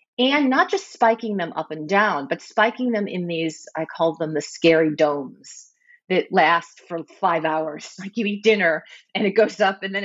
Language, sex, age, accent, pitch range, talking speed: English, female, 40-59, American, 165-205 Hz, 205 wpm